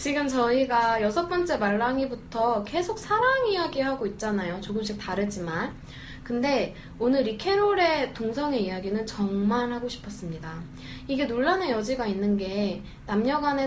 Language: Korean